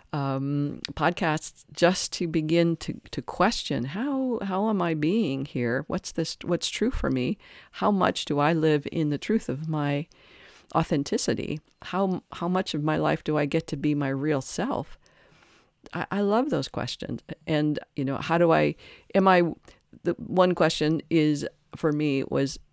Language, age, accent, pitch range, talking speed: English, 50-69, American, 140-175 Hz, 170 wpm